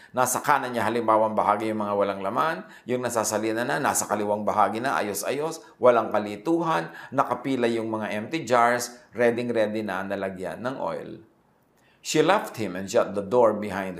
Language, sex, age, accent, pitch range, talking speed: English, male, 50-69, Filipino, 100-120 Hz, 165 wpm